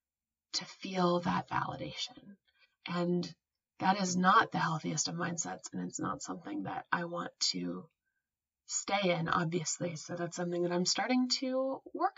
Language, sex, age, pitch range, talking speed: English, female, 20-39, 175-245 Hz, 155 wpm